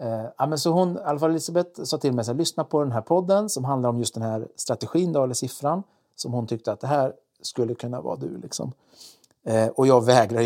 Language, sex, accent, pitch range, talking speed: Swedish, male, native, 120-145 Hz, 225 wpm